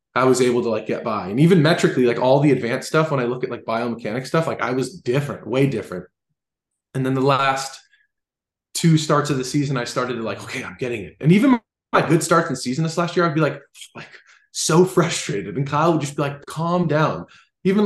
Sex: male